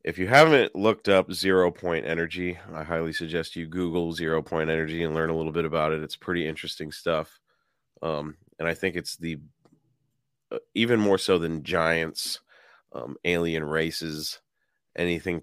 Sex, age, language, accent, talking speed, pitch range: male, 30-49, English, American, 165 wpm, 80-90 Hz